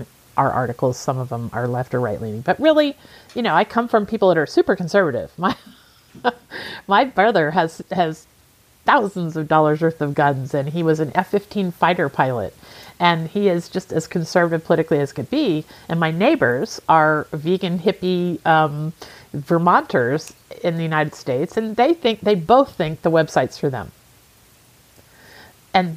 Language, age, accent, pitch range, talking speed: English, 50-69, American, 135-175 Hz, 165 wpm